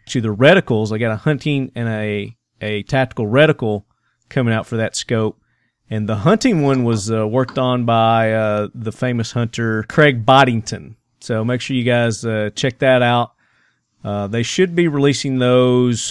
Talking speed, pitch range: 175 wpm, 115-140 Hz